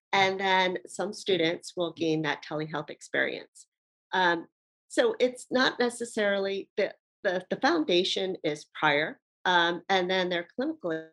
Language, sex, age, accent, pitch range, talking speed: English, female, 40-59, American, 150-185 Hz, 135 wpm